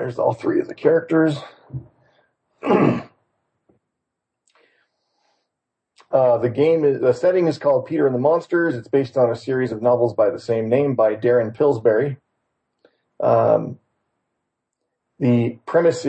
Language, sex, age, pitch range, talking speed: English, male, 40-59, 115-135 Hz, 130 wpm